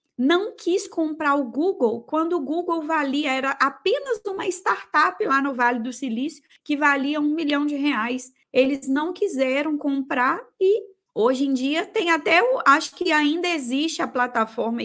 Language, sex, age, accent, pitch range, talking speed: Portuguese, female, 20-39, Brazilian, 250-320 Hz, 160 wpm